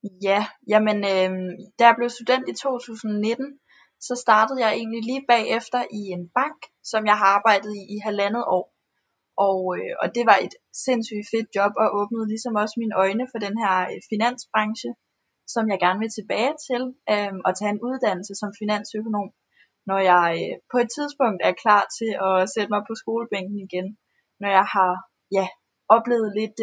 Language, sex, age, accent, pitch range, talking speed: Danish, female, 10-29, native, 195-230 Hz, 180 wpm